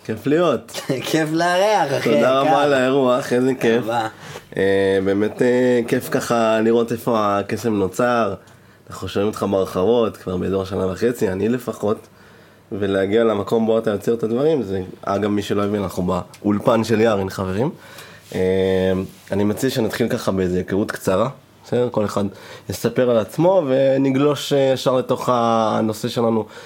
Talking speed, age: 140 wpm, 20-39